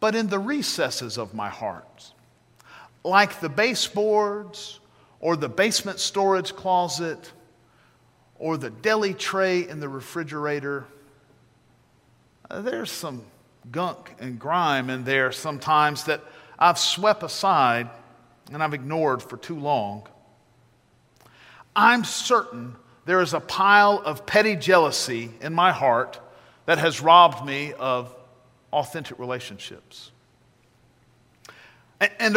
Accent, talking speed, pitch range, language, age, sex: American, 110 wpm, 130-195 Hz, English, 50-69, male